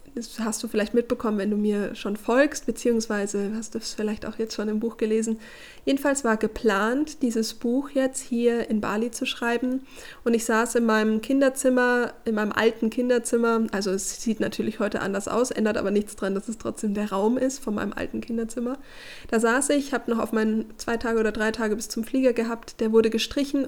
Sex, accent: female, German